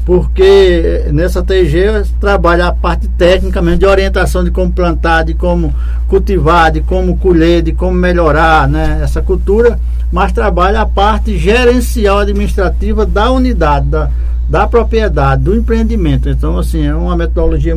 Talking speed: 145 wpm